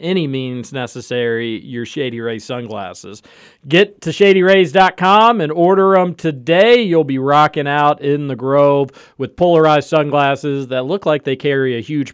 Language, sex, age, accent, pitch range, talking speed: English, male, 40-59, American, 130-170 Hz, 155 wpm